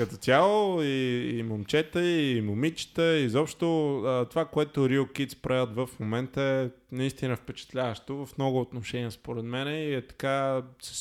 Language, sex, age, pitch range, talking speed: Bulgarian, male, 20-39, 125-155 Hz, 145 wpm